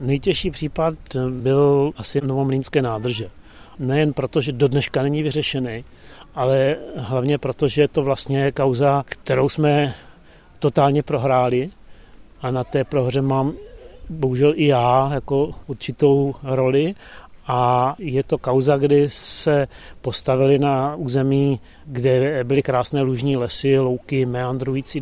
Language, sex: Czech, male